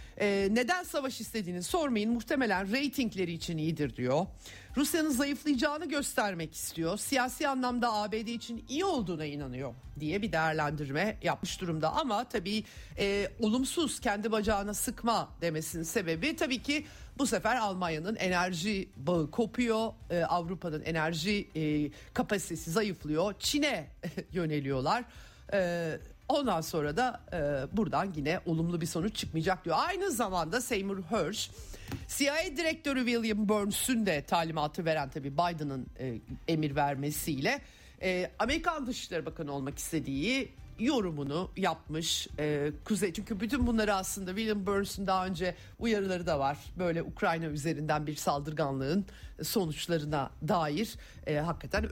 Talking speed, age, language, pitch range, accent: 125 wpm, 50-69, Turkish, 155-230 Hz, native